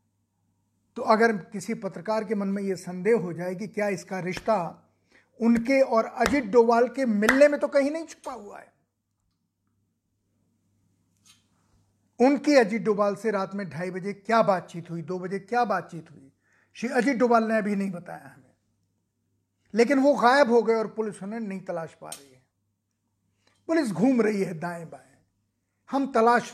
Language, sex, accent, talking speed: Hindi, male, native, 165 wpm